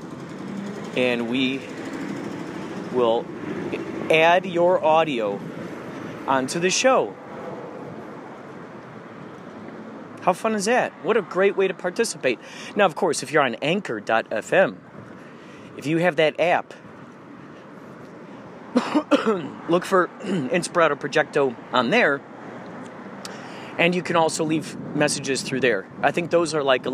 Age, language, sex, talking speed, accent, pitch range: 30-49, English, male, 115 wpm, American, 155-220 Hz